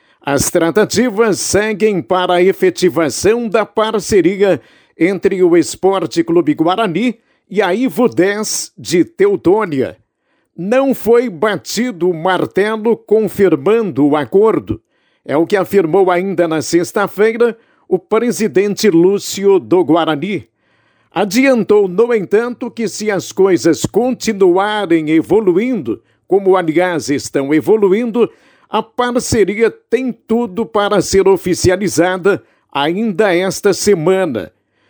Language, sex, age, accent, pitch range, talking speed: Portuguese, male, 60-79, Brazilian, 180-230 Hz, 105 wpm